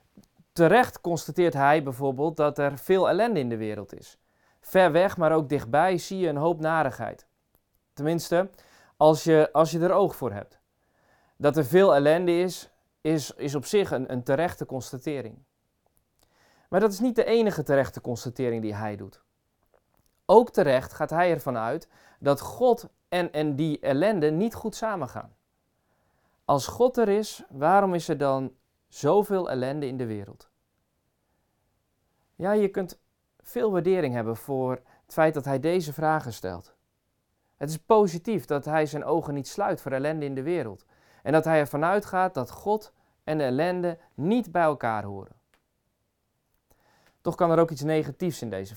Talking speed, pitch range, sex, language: 165 wpm, 125-175 Hz, male, Dutch